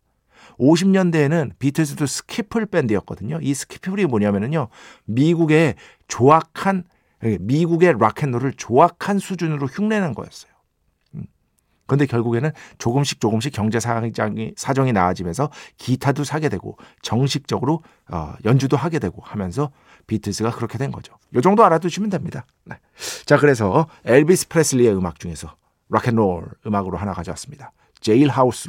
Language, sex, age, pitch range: Korean, male, 50-69, 105-155 Hz